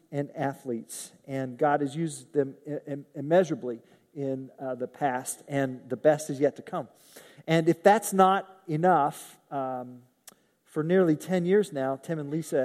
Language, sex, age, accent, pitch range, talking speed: English, male, 40-59, American, 145-195 Hz, 155 wpm